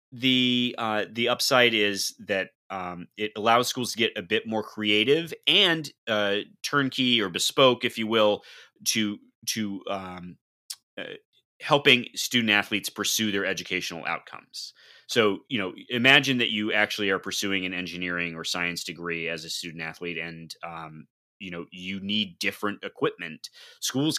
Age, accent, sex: 30-49, American, male